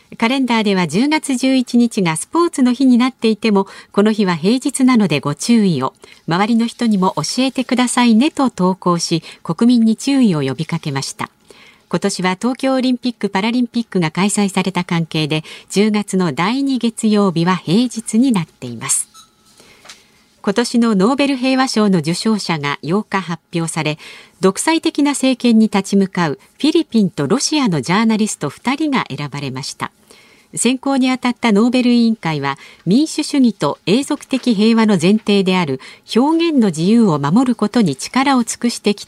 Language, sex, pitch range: Japanese, female, 170-245 Hz